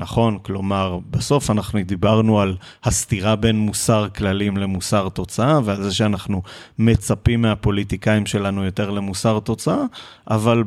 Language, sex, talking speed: Hebrew, male, 125 wpm